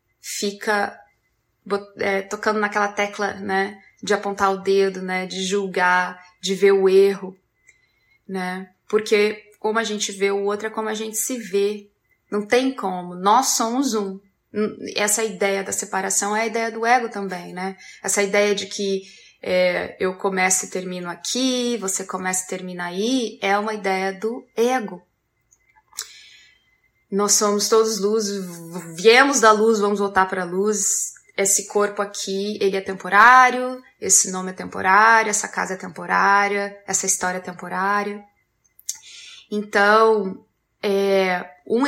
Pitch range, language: 190-220 Hz, Portuguese